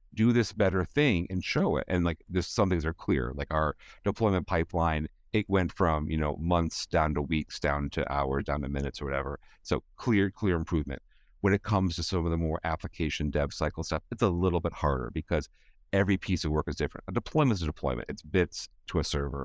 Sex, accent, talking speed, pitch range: male, American, 225 wpm, 75-95 Hz